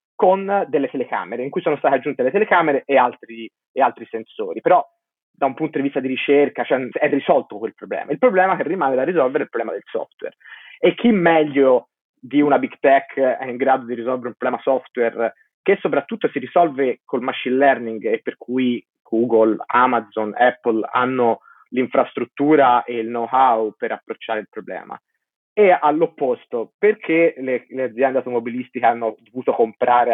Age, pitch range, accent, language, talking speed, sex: 30-49, 120-165 Hz, native, Italian, 165 wpm, male